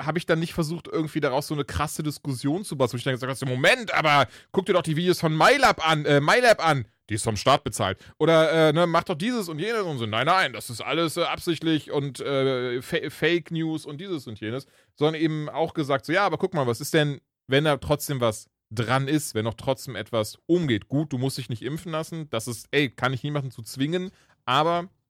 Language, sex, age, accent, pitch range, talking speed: German, male, 30-49, German, 115-155 Hz, 240 wpm